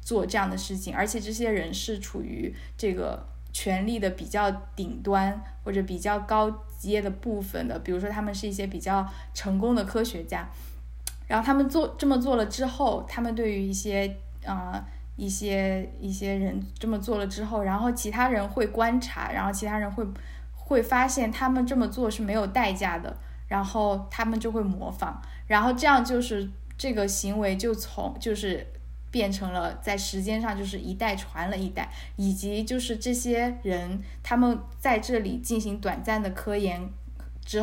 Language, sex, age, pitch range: Chinese, female, 10-29, 190-230 Hz